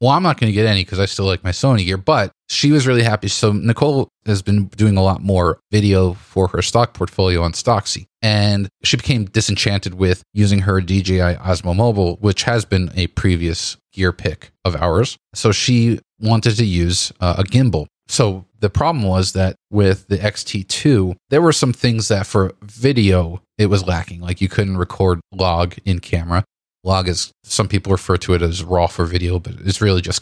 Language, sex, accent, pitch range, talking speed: English, male, American, 90-110 Hz, 200 wpm